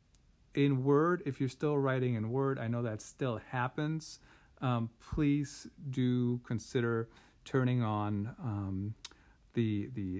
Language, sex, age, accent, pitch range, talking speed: English, male, 50-69, American, 110-140 Hz, 130 wpm